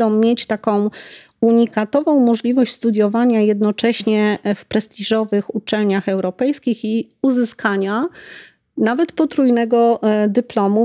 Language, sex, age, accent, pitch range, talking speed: Polish, female, 40-59, native, 205-235 Hz, 85 wpm